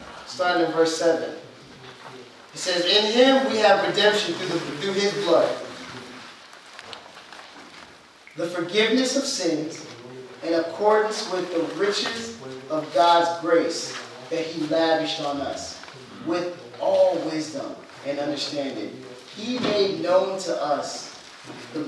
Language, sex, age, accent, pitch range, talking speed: English, male, 30-49, American, 155-185 Hz, 120 wpm